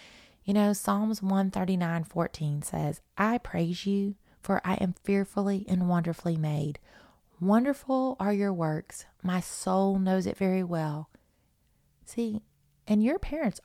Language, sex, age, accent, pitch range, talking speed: English, female, 30-49, American, 170-215 Hz, 125 wpm